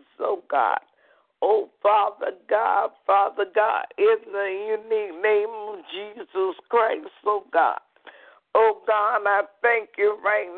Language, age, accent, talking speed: English, 50-69, American, 125 wpm